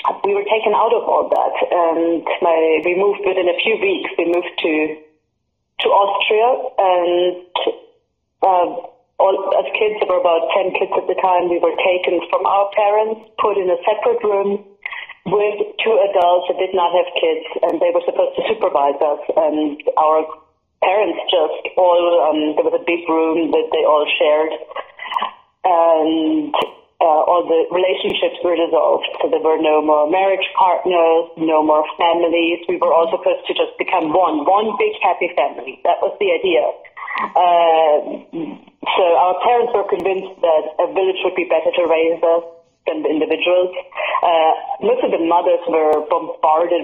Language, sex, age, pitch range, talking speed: English, female, 30-49, 165-255 Hz, 170 wpm